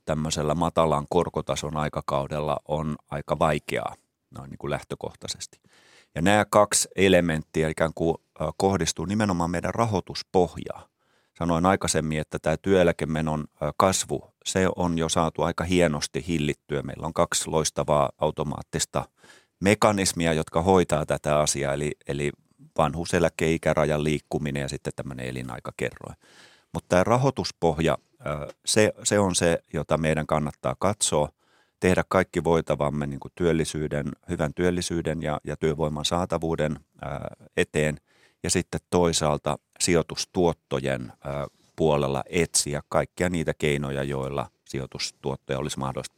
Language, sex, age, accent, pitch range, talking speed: Finnish, male, 30-49, native, 75-85 Hz, 110 wpm